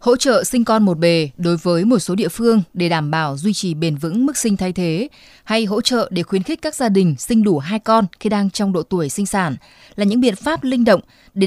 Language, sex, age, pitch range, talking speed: Vietnamese, female, 20-39, 175-225 Hz, 260 wpm